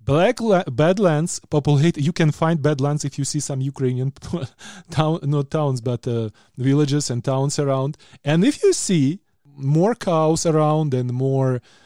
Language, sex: Ukrainian, male